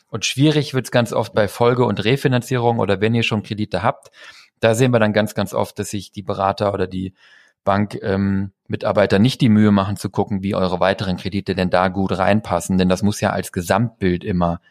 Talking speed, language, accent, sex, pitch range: 210 wpm, German, German, male, 95-110 Hz